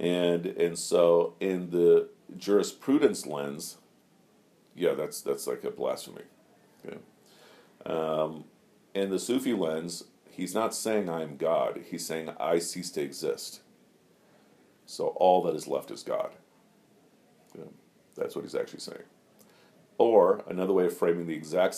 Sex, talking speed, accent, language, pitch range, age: male, 140 wpm, American, English, 80-110 Hz, 50-69